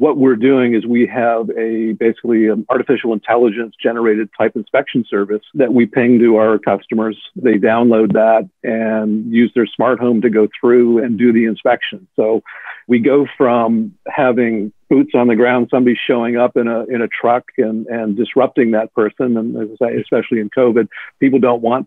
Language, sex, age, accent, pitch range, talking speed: English, male, 50-69, American, 110-125 Hz, 185 wpm